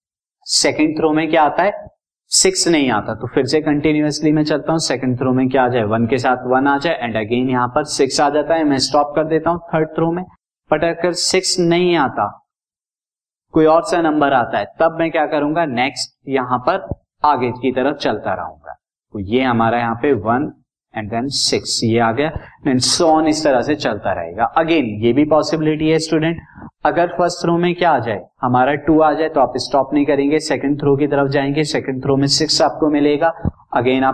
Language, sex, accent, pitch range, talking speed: Hindi, male, native, 125-155 Hz, 190 wpm